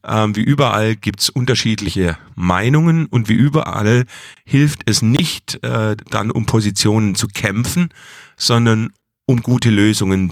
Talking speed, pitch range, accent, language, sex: 130 wpm, 90-120 Hz, German, German, male